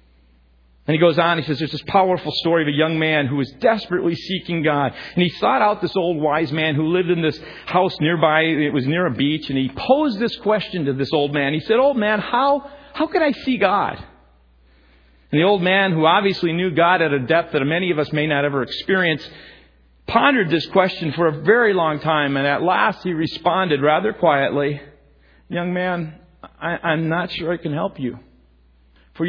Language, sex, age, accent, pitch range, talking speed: English, male, 40-59, American, 130-170 Hz, 210 wpm